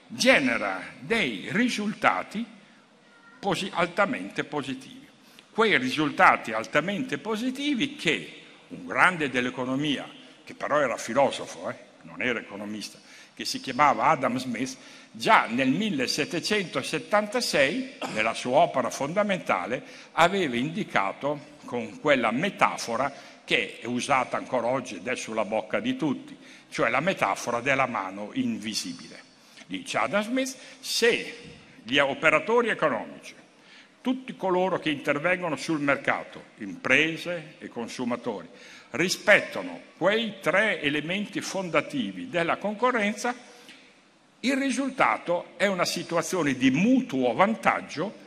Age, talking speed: 60-79, 105 wpm